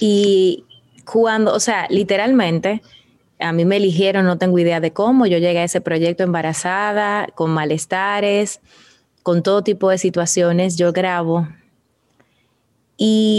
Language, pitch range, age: Spanish, 175-215 Hz, 30-49